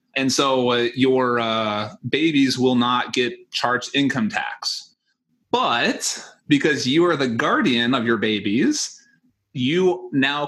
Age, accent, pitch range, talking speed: 30-49, American, 120-180 Hz, 130 wpm